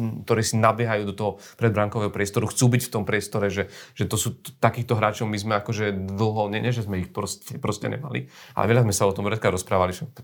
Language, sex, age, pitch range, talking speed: Slovak, male, 40-59, 100-115 Hz, 245 wpm